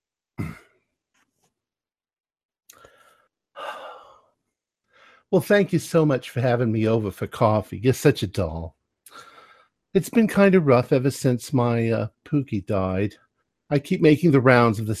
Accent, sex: American, male